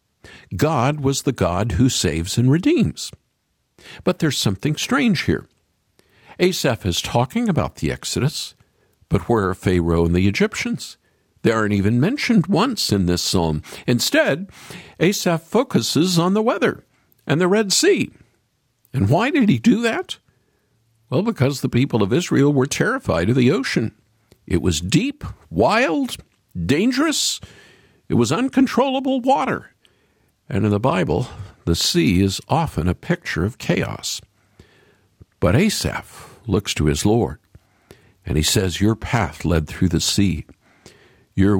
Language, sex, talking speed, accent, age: English, male, 140 wpm, American, 50-69